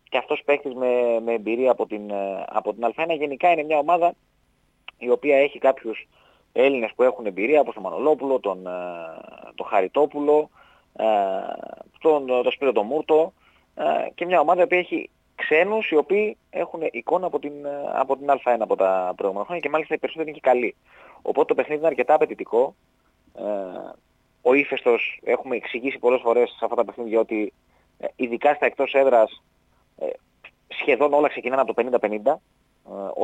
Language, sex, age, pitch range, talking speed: Greek, male, 30-49, 115-155 Hz, 160 wpm